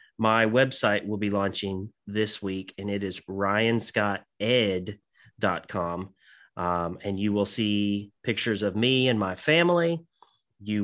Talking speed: 120 wpm